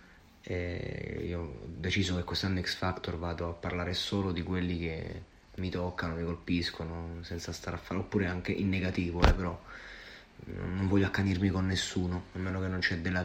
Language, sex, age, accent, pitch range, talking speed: Italian, male, 30-49, native, 85-95 Hz, 180 wpm